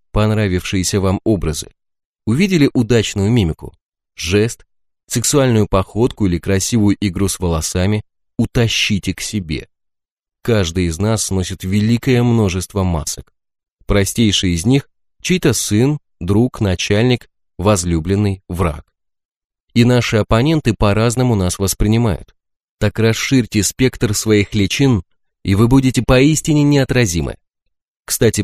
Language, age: Russian, 30-49